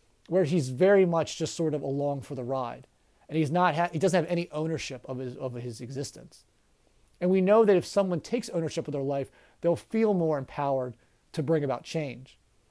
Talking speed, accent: 205 wpm, American